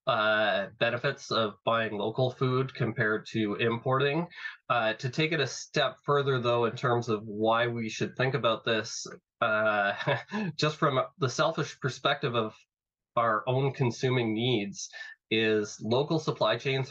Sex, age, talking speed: male, 20-39, 145 wpm